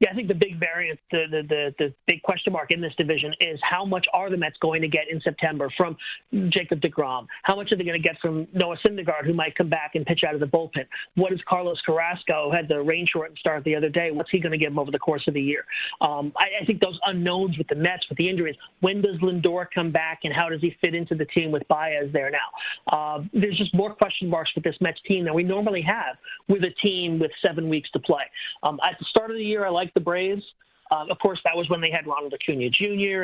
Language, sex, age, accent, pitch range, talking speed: English, male, 40-59, American, 155-185 Hz, 265 wpm